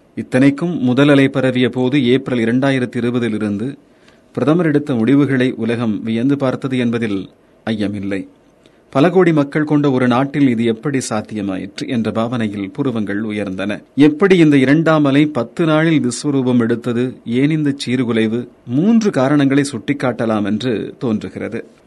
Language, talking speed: Tamil, 110 wpm